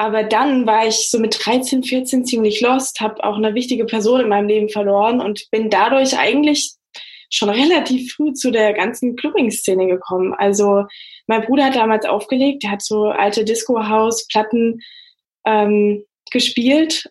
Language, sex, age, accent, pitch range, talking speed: English, female, 10-29, German, 210-260 Hz, 155 wpm